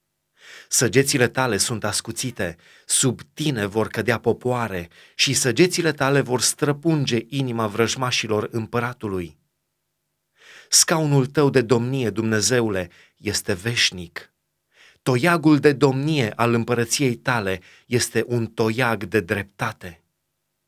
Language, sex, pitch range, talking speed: Romanian, male, 115-145 Hz, 100 wpm